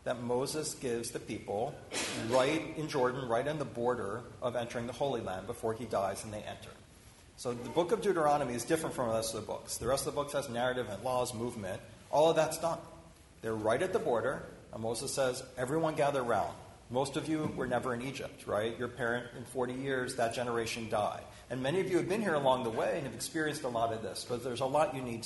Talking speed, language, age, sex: 240 wpm, English, 40-59, male